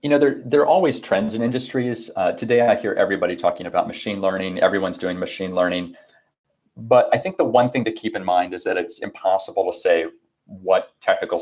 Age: 30-49